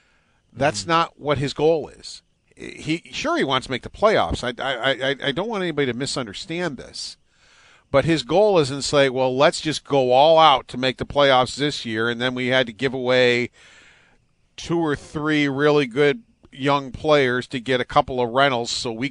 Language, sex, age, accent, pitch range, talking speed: English, male, 50-69, American, 125-155 Hz, 200 wpm